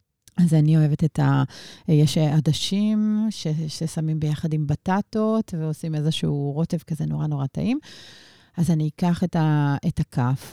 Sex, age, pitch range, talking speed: female, 30-49, 145-170 Hz, 150 wpm